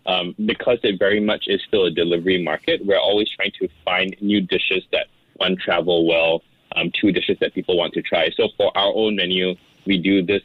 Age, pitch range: 20-39, 90-130 Hz